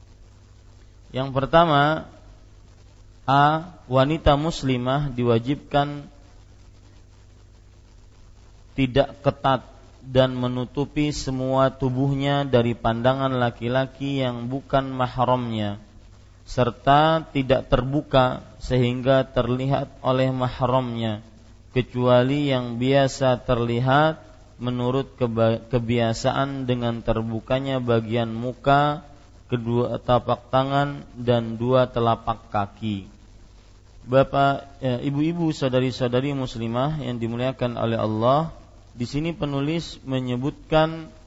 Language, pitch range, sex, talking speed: Malay, 110-135 Hz, male, 80 wpm